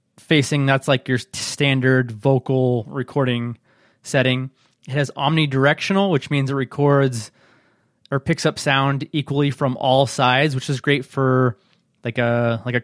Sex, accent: male, American